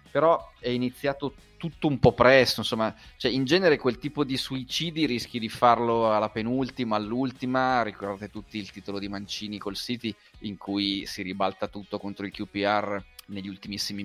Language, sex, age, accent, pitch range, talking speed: Italian, male, 30-49, native, 100-115 Hz, 165 wpm